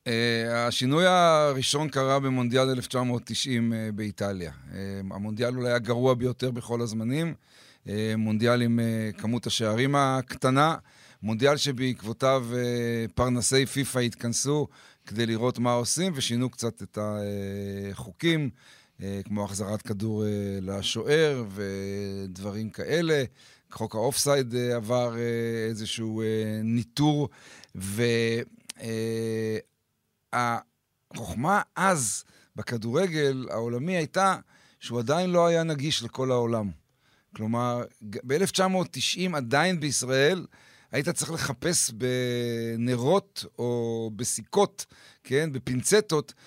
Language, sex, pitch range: Hebrew, male, 110-140 Hz